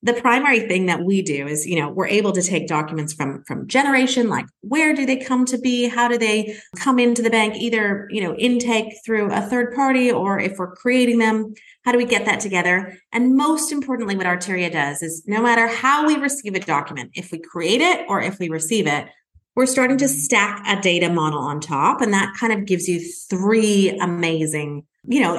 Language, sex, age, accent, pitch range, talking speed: English, female, 30-49, American, 180-250 Hz, 215 wpm